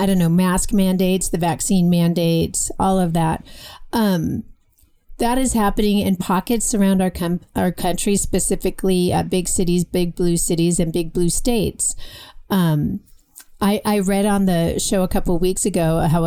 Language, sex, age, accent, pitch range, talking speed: English, female, 40-59, American, 175-210 Hz, 165 wpm